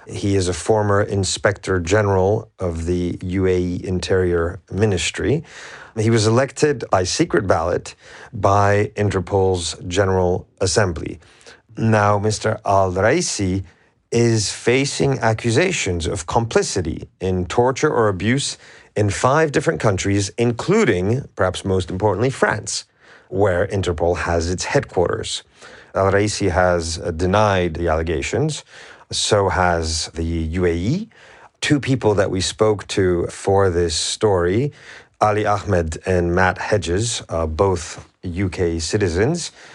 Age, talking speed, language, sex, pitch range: 40-59, 115 wpm, English, male, 90-110 Hz